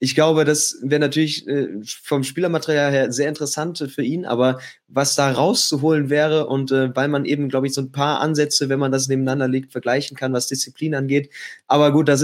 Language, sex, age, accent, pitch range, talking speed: German, male, 20-39, German, 125-145 Hz, 195 wpm